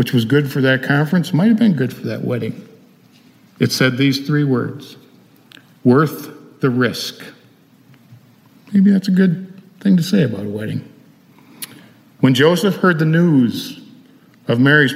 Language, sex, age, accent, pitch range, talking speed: English, male, 50-69, American, 125-155 Hz, 150 wpm